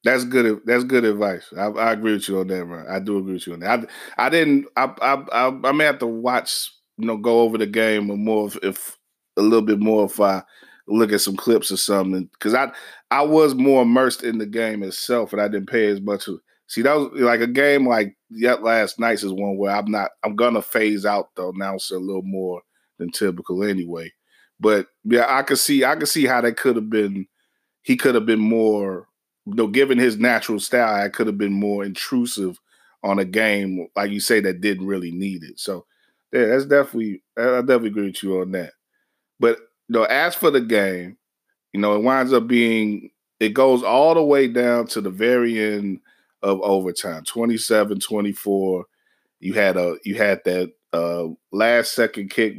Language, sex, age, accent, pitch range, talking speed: English, male, 20-39, American, 95-120 Hz, 215 wpm